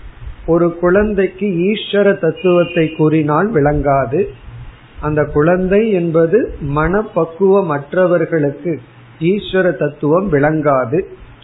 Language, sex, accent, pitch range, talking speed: Tamil, male, native, 145-185 Hz, 70 wpm